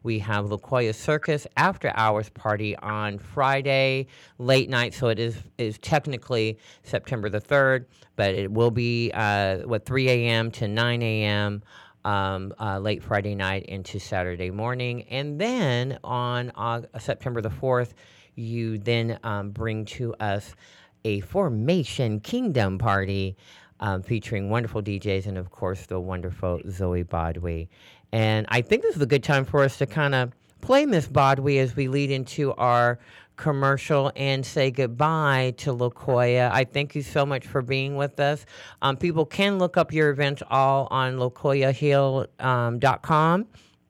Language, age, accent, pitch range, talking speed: English, 40-59, American, 110-140 Hz, 155 wpm